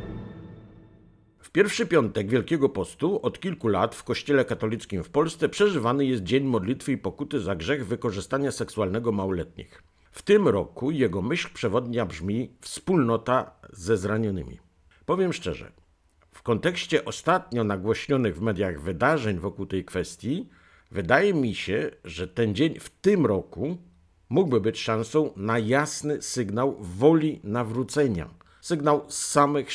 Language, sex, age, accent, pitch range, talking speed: Polish, male, 50-69, native, 90-130 Hz, 130 wpm